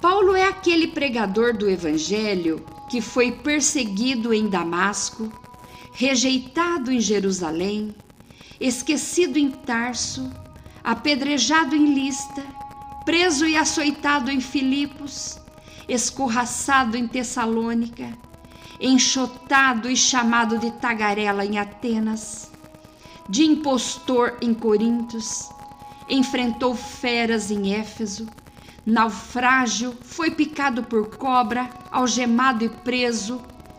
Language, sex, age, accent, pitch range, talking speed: Portuguese, female, 50-69, Brazilian, 210-270 Hz, 90 wpm